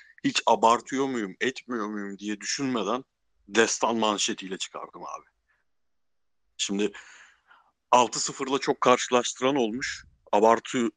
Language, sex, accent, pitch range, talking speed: Turkish, male, native, 95-120 Hz, 95 wpm